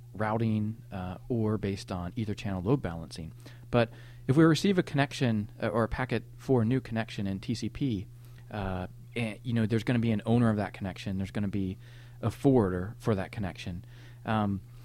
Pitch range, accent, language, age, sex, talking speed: 105-125 Hz, American, English, 30-49, male, 195 wpm